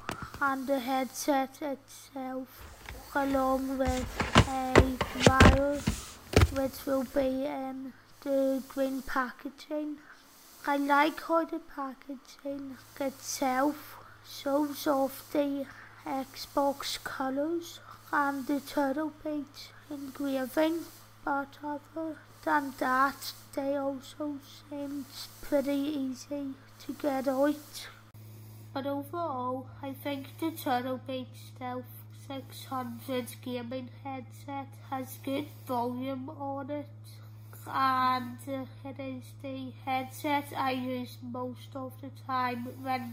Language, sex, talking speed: English, female, 100 wpm